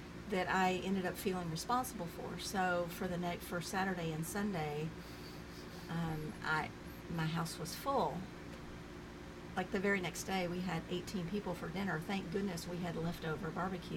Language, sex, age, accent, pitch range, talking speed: English, female, 50-69, American, 170-200 Hz, 165 wpm